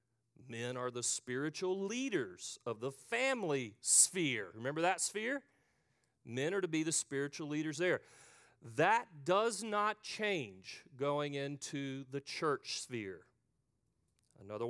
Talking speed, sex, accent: 125 wpm, male, American